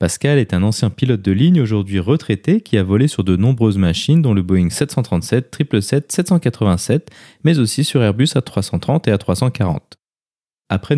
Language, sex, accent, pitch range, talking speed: French, male, French, 95-135 Hz, 165 wpm